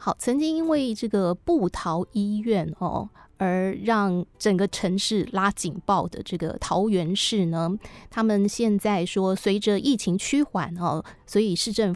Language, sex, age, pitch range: Chinese, female, 20-39, 180-225 Hz